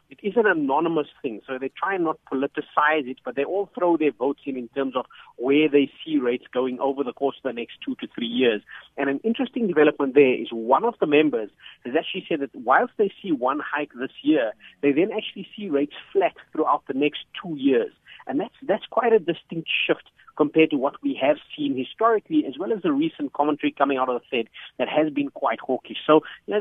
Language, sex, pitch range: English, male, 135-190 Hz